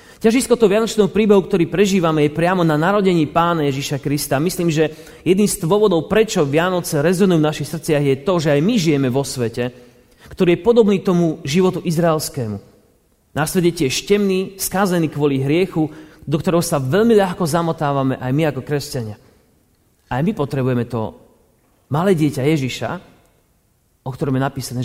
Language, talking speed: Slovak, 155 wpm